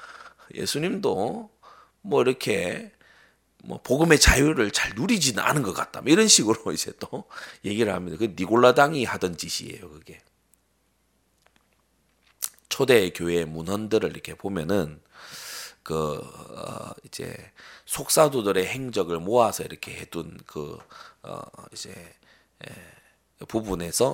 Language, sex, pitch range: Korean, male, 85-115 Hz